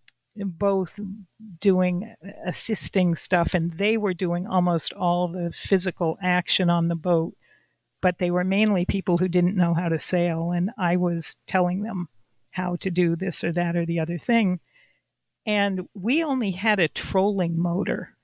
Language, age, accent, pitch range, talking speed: English, 50-69, American, 170-195 Hz, 160 wpm